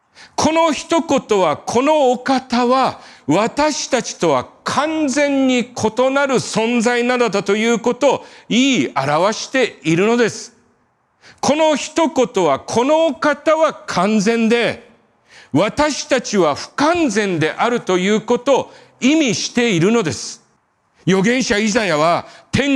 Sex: male